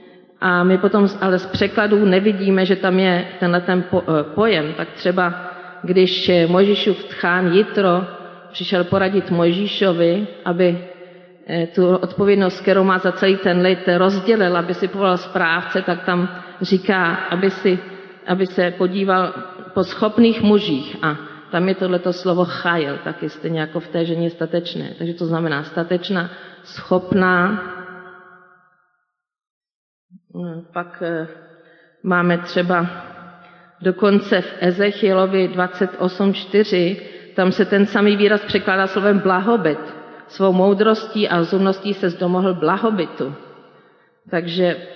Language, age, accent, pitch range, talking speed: Czech, 40-59, native, 175-200 Hz, 120 wpm